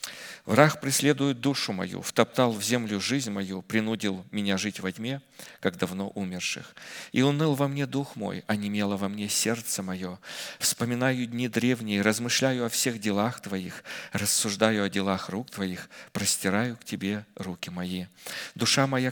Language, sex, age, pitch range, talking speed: Russian, male, 40-59, 100-130 Hz, 150 wpm